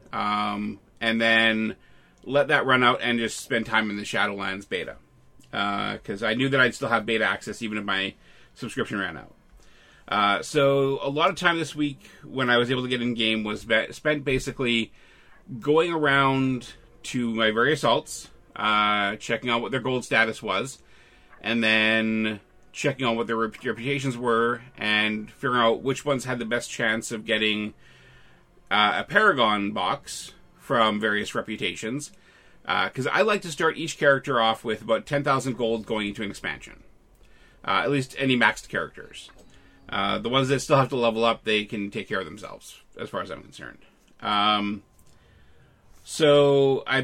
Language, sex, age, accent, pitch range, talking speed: English, male, 30-49, American, 110-140 Hz, 175 wpm